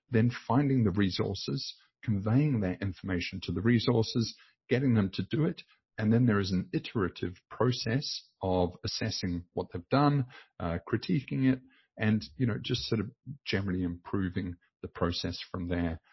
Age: 50-69